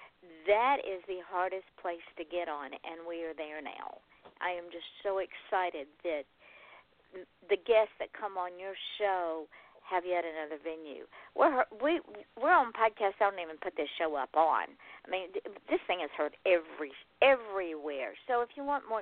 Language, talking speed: English, 170 wpm